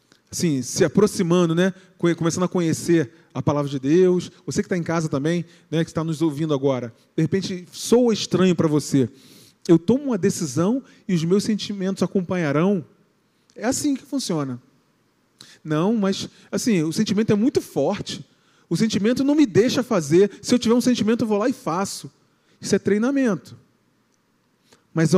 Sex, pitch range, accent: male, 155-210 Hz, Brazilian